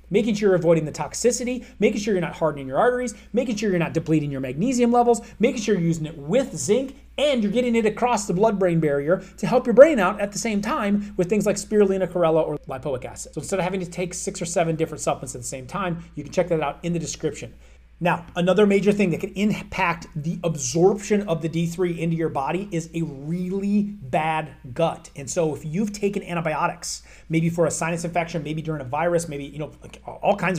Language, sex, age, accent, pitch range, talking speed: English, male, 30-49, American, 155-200 Hz, 230 wpm